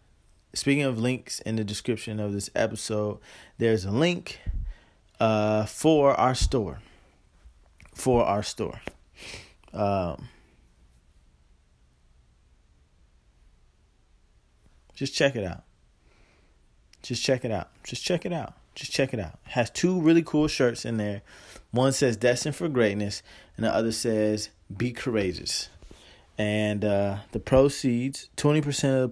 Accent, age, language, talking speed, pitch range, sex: American, 20-39, English, 130 wpm, 95-125 Hz, male